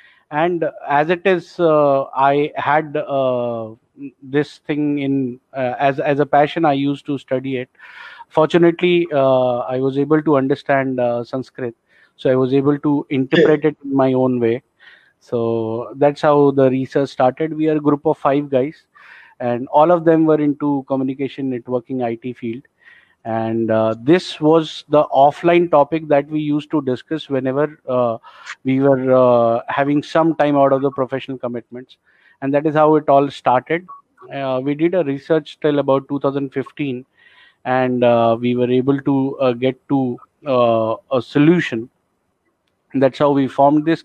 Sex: male